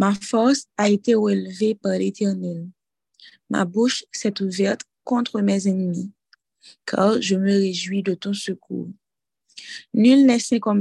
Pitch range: 195-240 Hz